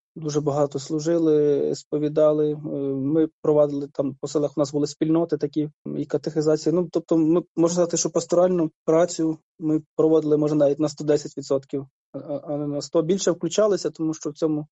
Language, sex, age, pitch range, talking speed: Ukrainian, male, 20-39, 145-160 Hz, 160 wpm